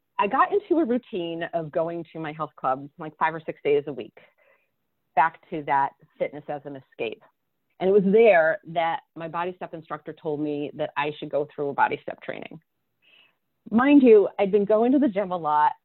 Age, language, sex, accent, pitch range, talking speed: 30-49, English, female, American, 155-215 Hz, 210 wpm